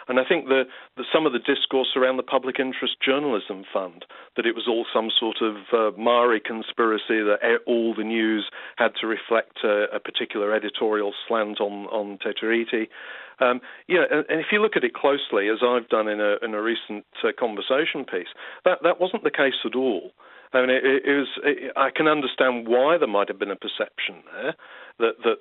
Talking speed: 205 wpm